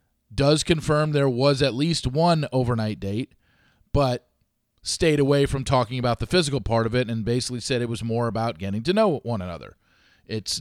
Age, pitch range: 40-59, 110-140 Hz